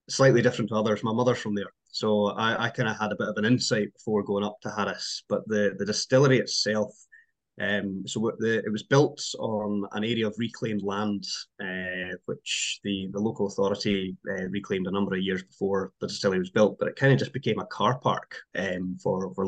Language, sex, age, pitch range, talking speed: English, male, 20-39, 100-115 Hz, 210 wpm